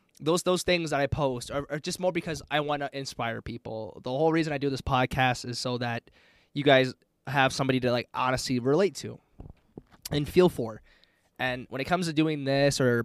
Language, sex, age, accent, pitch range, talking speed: English, male, 20-39, American, 130-165 Hz, 205 wpm